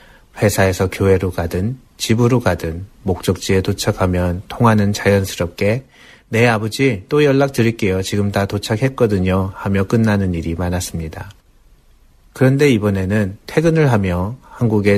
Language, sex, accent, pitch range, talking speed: English, male, Korean, 90-110 Hz, 105 wpm